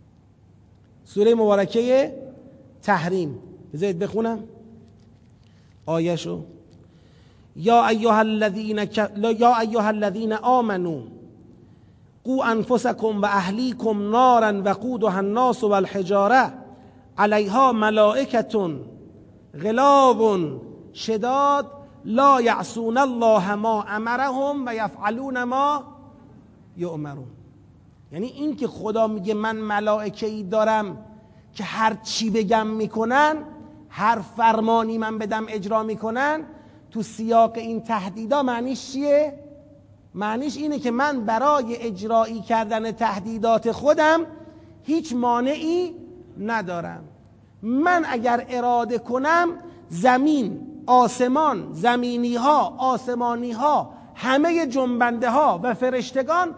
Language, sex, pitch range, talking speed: Persian, male, 210-255 Hz, 90 wpm